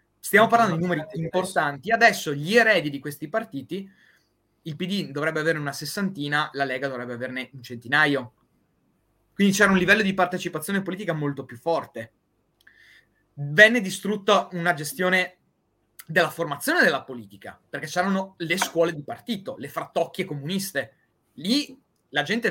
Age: 30-49